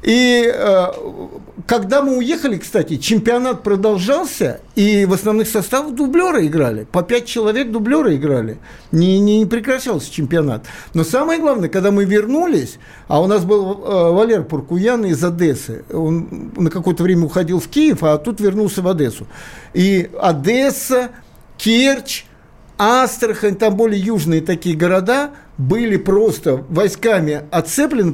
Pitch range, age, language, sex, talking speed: 180-245 Hz, 60-79, Russian, male, 135 wpm